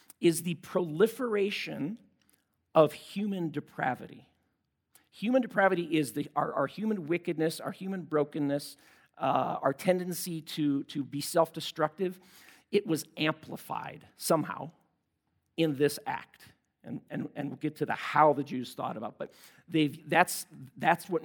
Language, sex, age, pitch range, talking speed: English, male, 50-69, 145-190 Hz, 140 wpm